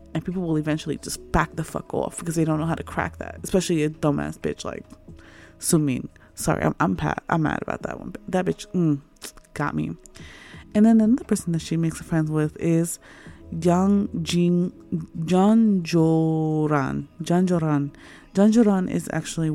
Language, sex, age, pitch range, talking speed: English, female, 20-39, 150-185 Hz, 180 wpm